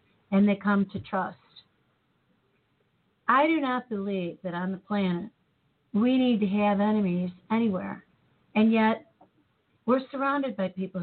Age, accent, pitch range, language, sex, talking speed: 40-59, American, 175-210 Hz, English, female, 135 wpm